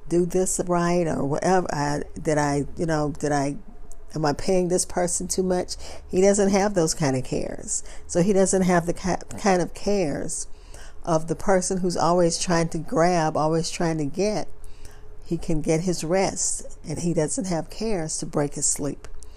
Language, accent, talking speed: English, American, 185 wpm